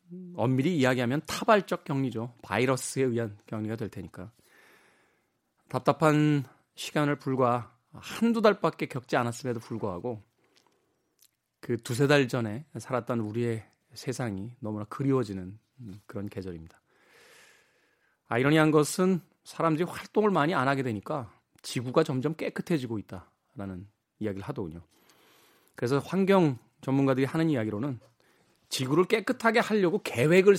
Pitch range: 115-160 Hz